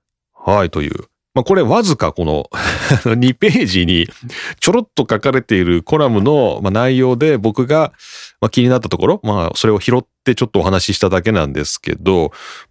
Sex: male